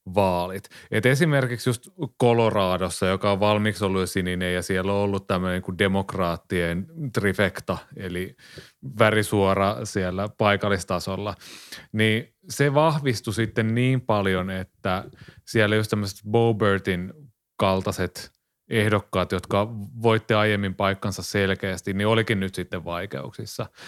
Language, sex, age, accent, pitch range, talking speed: Finnish, male, 30-49, native, 95-115 Hz, 120 wpm